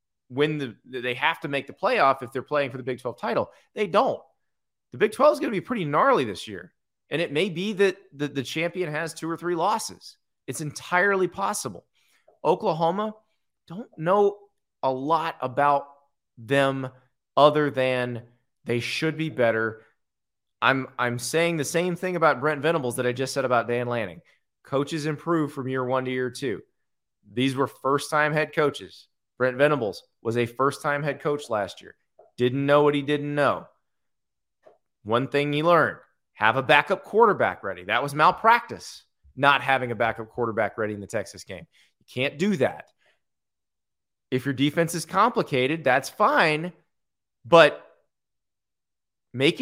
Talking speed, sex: 165 wpm, male